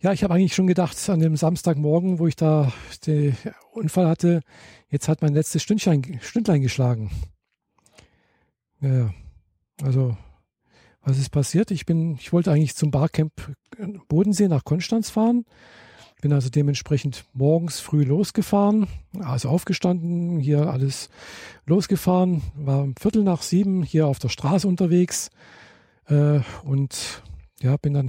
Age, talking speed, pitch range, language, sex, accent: 50-69, 130 wpm, 140-180 Hz, German, male, German